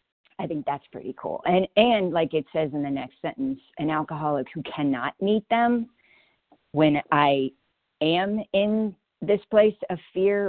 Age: 40-59